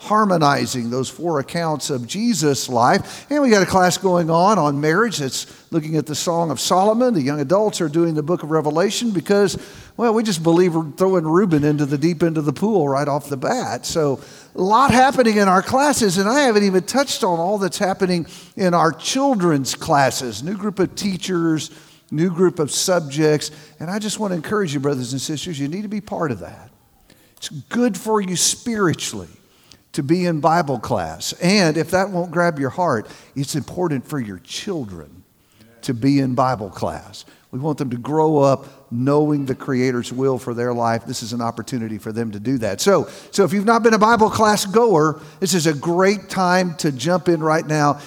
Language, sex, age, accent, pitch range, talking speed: English, male, 50-69, American, 140-190 Hz, 205 wpm